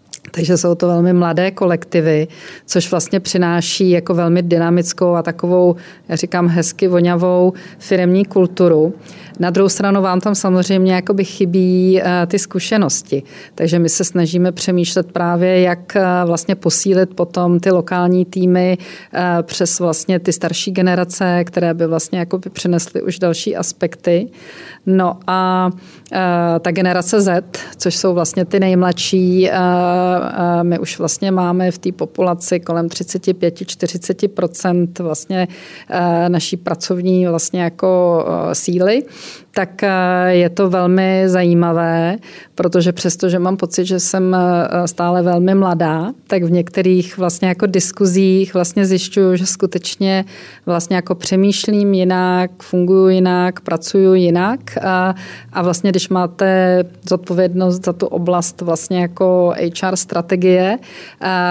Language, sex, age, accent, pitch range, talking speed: Czech, female, 40-59, native, 175-190 Hz, 125 wpm